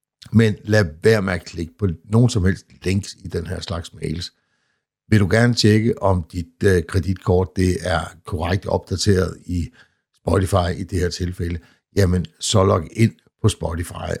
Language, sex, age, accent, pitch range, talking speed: Danish, male, 60-79, native, 80-100 Hz, 170 wpm